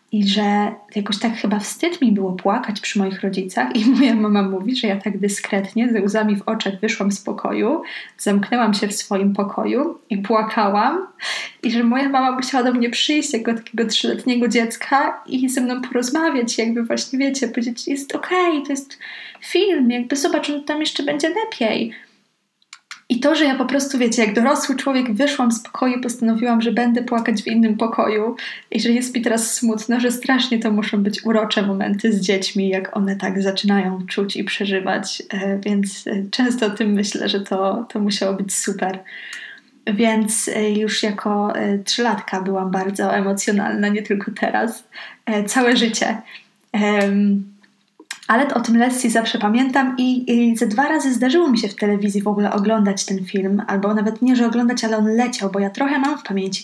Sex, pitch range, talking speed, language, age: female, 205-245 Hz, 180 wpm, Polish, 20-39